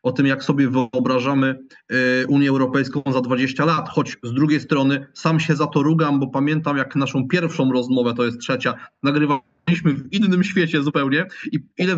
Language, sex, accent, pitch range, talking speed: Polish, male, native, 140-180 Hz, 175 wpm